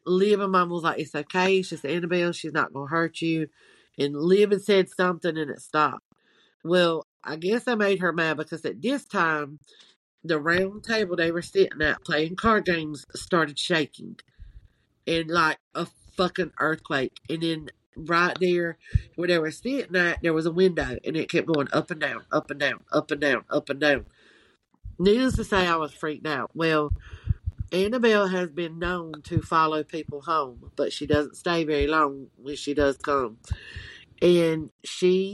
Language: English